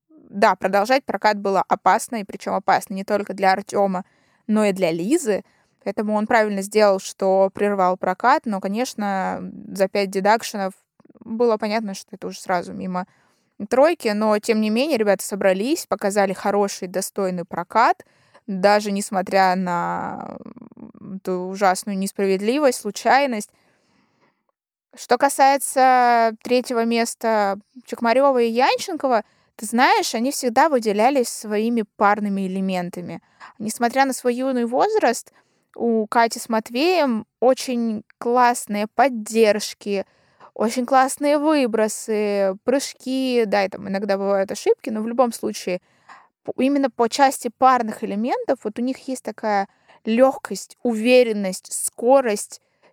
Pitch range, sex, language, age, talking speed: 195-250 Hz, female, Russian, 20-39, 120 wpm